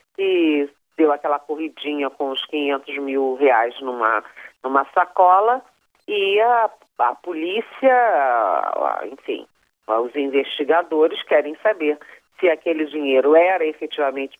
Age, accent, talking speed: 40-59, Brazilian, 110 wpm